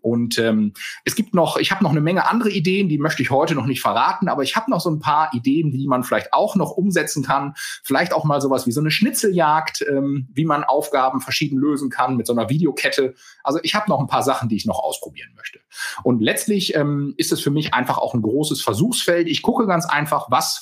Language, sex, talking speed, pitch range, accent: German, male, 240 wpm, 130-185 Hz, German